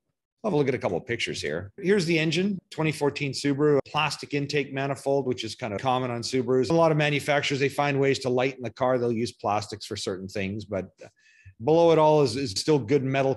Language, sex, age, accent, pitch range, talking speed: English, male, 40-59, American, 105-140 Hz, 235 wpm